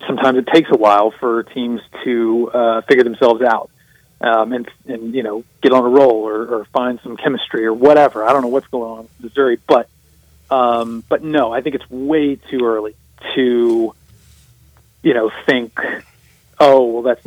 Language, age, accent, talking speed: English, 40-59, American, 185 wpm